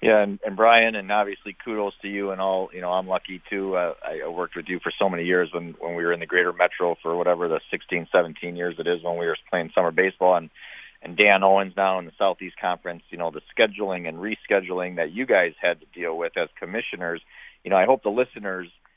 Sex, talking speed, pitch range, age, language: male, 245 wpm, 85-100 Hz, 40-59, English